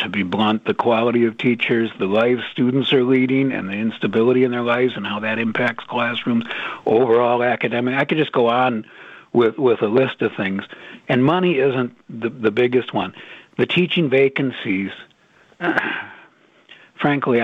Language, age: English, 60-79